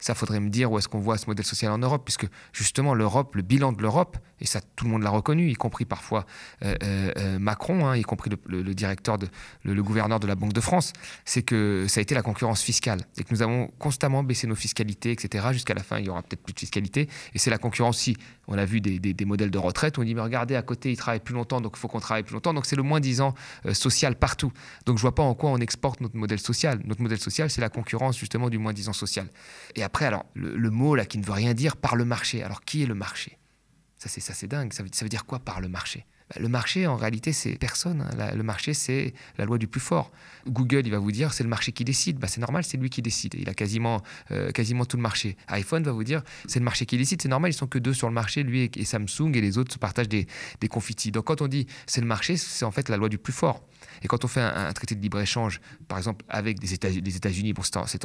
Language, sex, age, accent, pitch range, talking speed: French, male, 30-49, French, 105-130 Hz, 285 wpm